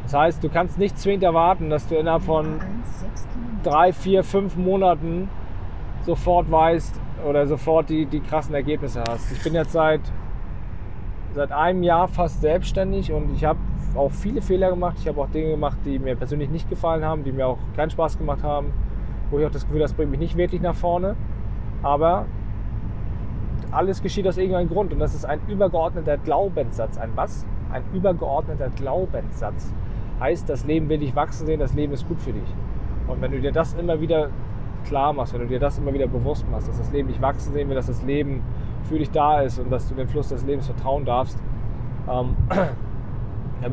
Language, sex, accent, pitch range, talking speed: German, male, German, 120-155 Hz, 195 wpm